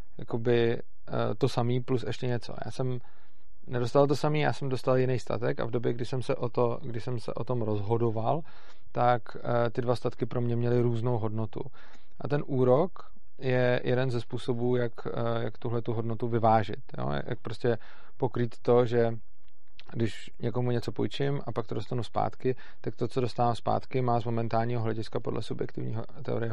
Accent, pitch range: native, 115-125 Hz